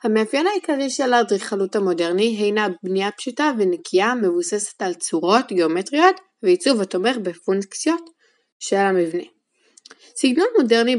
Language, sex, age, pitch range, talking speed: Hebrew, female, 20-39, 205-260 Hz, 110 wpm